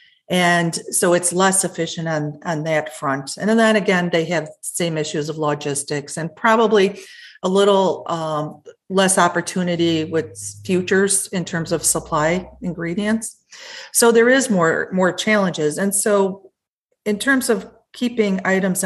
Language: English